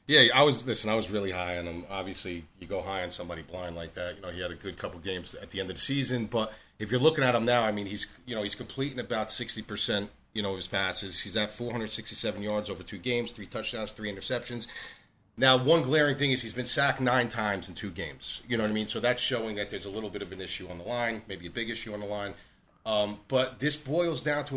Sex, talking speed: male, 280 wpm